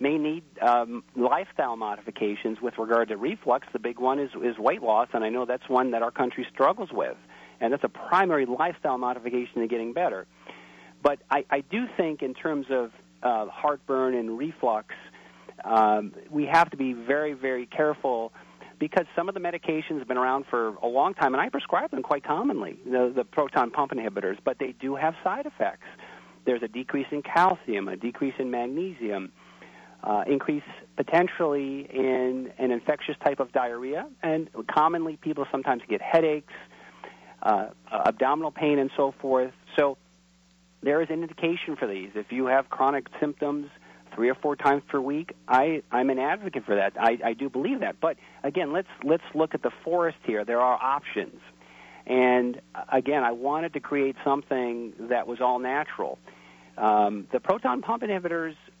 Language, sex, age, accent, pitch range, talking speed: English, male, 50-69, American, 120-150 Hz, 170 wpm